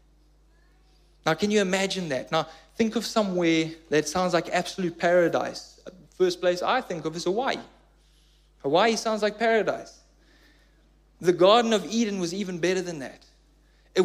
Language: English